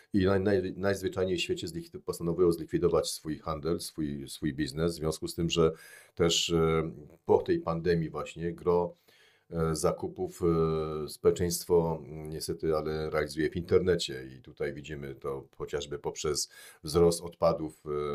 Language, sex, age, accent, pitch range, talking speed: Polish, male, 40-59, native, 75-85 Hz, 140 wpm